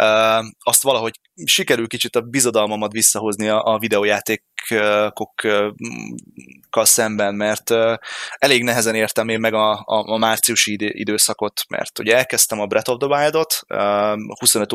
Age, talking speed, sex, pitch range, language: 20-39, 135 wpm, male, 105-120 Hz, Hungarian